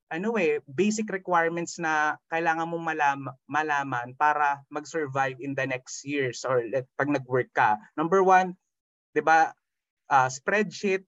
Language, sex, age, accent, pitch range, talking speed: Filipino, male, 20-39, native, 145-195 Hz, 145 wpm